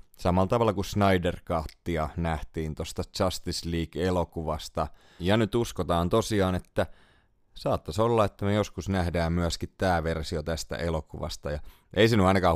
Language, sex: Finnish, male